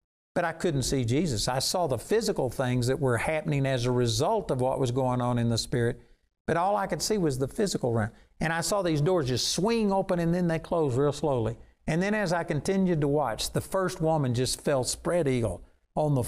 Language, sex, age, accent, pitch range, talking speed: English, male, 60-79, American, 130-175 Hz, 230 wpm